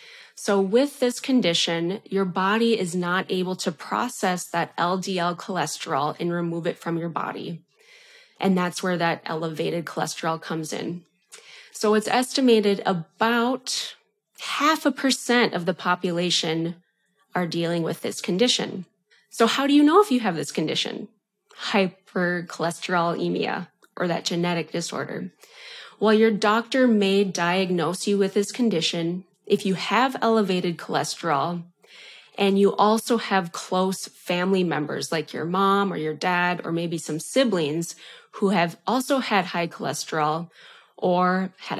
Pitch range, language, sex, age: 170-225 Hz, English, female, 20-39